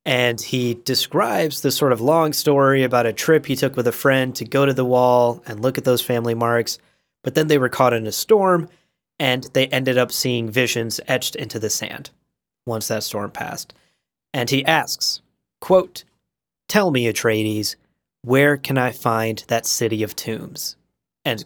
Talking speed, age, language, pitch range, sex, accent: 180 wpm, 30-49, English, 115-145 Hz, male, American